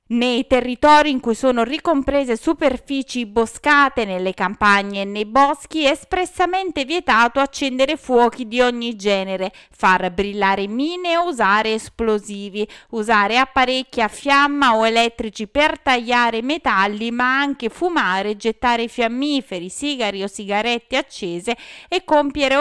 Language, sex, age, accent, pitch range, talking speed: Italian, female, 30-49, native, 215-295 Hz, 125 wpm